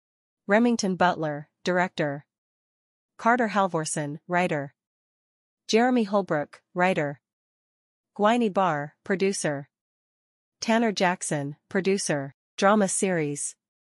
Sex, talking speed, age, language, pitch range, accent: female, 75 wpm, 30-49, English, 150-200 Hz, American